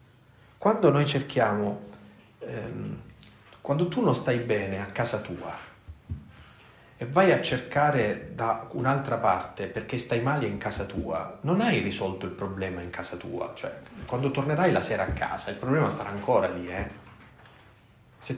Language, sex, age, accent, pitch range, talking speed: Italian, male, 40-59, native, 100-135 Hz, 155 wpm